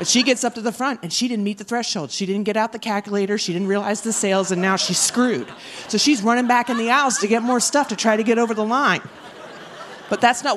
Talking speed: 280 wpm